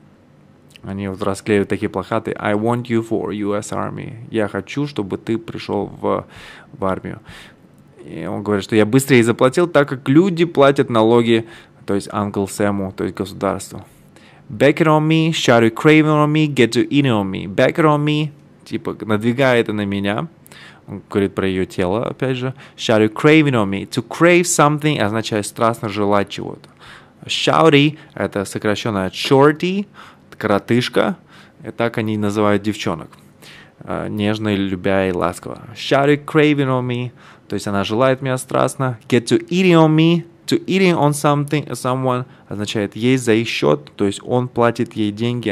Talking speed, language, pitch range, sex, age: 160 wpm, Russian, 105-145 Hz, male, 20-39